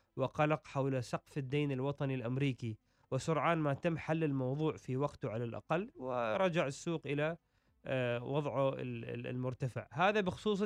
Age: 20-39